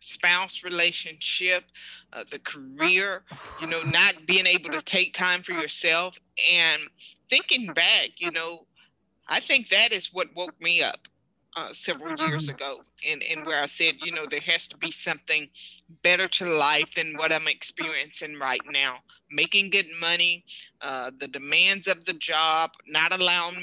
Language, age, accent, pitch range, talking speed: English, 30-49, American, 160-190 Hz, 165 wpm